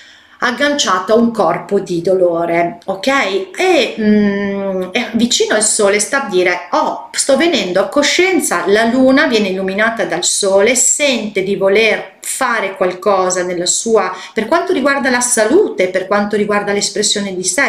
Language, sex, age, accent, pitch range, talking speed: Italian, female, 40-59, native, 190-260 Hz, 155 wpm